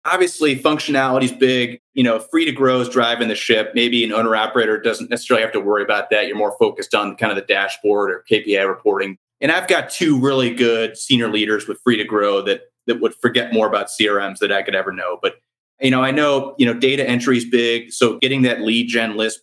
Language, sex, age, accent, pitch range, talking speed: English, male, 30-49, American, 115-135 Hz, 235 wpm